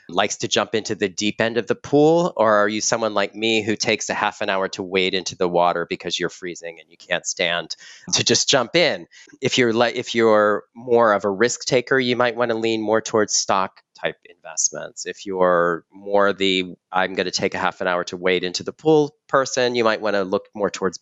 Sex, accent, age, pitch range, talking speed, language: male, American, 30-49, 90-120 Hz, 235 wpm, English